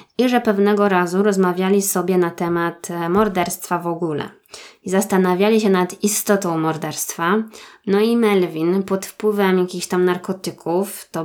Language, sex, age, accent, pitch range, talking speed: Polish, female, 20-39, native, 180-215 Hz, 135 wpm